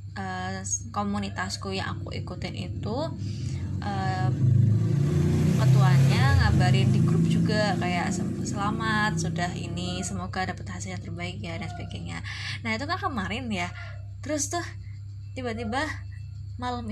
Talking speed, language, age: 115 wpm, Indonesian, 10-29